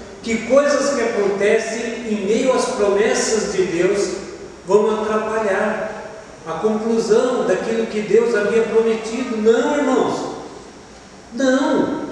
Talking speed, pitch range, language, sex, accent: 110 wpm, 215-270 Hz, Portuguese, male, Brazilian